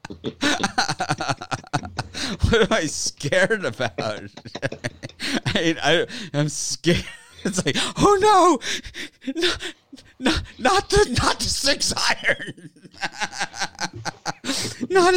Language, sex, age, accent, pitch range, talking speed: English, male, 50-69, American, 105-175 Hz, 90 wpm